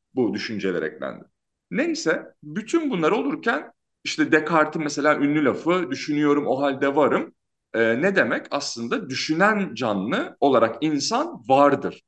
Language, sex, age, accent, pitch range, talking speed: Turkish, male, 40-59, native, 135-205 Hz, 125 wpm